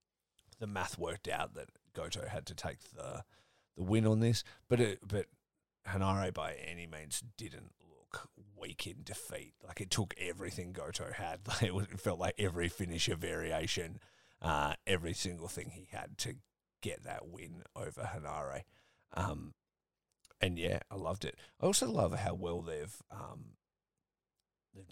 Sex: male